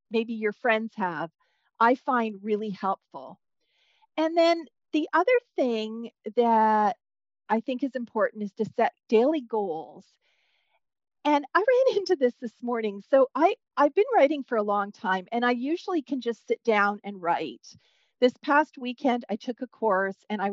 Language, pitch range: English, 215-280 Hz